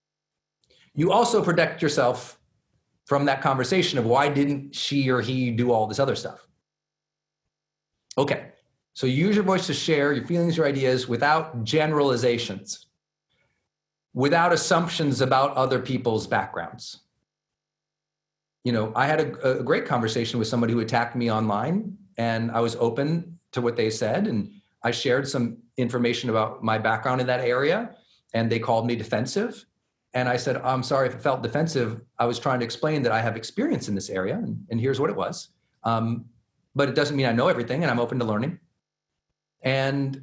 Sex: male